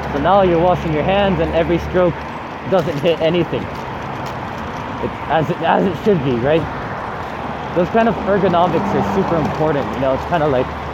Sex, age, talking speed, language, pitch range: male, 20-39, 180 wpm, English, 155-190 Hz